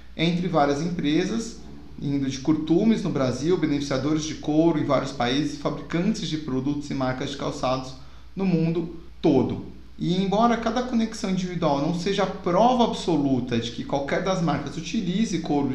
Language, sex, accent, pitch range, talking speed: Portuguese, male, Brazilian, 145-195 Hz, 155 wpm